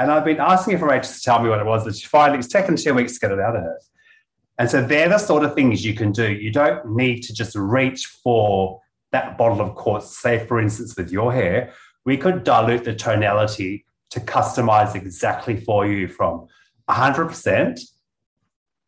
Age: 30-49